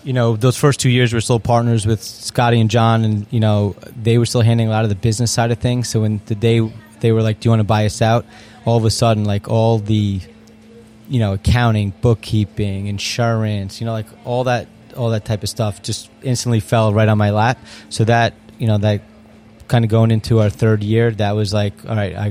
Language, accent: English, American